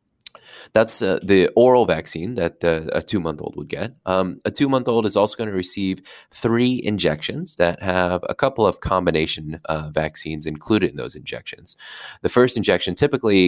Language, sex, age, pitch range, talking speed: English, male, 20-39, 80-100 Hz, 160 wpm